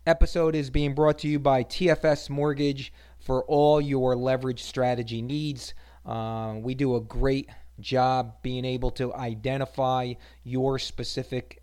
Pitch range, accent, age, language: 115-140 Hz, American, 30-49, English